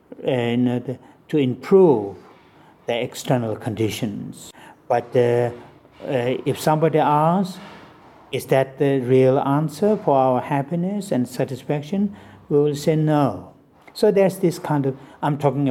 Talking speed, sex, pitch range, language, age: 125 wpm, male, 125-150 Hz, English, 60-79